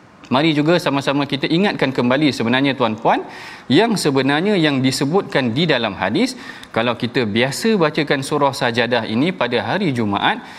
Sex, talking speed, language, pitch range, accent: male, 140 wpm, Malayalam, 130-175 Hz, Indonesian